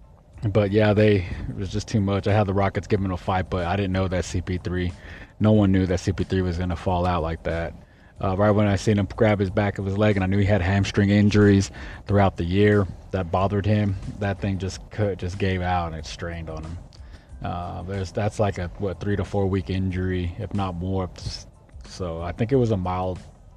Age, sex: 20-39, male